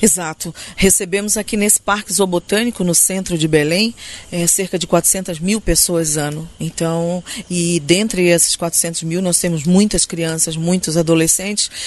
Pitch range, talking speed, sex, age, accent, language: 170-200 Hz, 140 wpm, female, 40-59, Brazilian, Portuguese